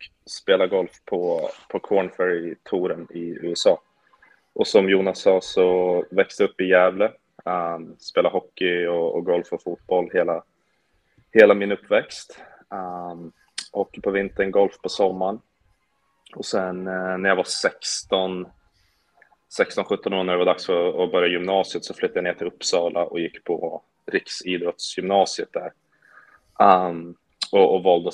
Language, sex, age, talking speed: Swedish, male, 20-39, 145 wpm